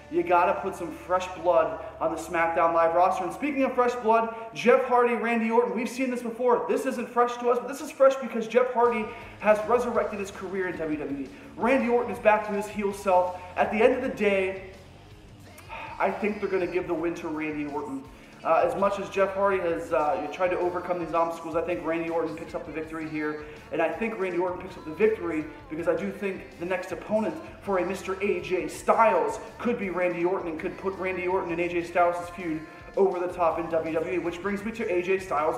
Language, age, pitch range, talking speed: English, 30-49, 165-200 Hz, 225 wpm